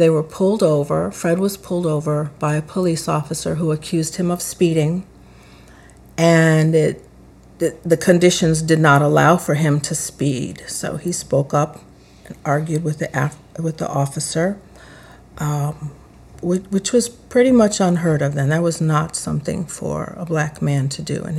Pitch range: 150-175 Hz